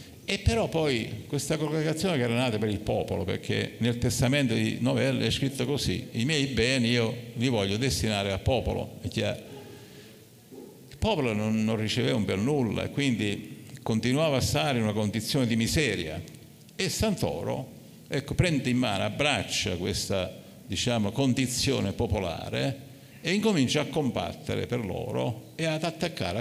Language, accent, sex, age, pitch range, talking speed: Italian, native, male, 50-69, 105-140 Hz, 145 wpm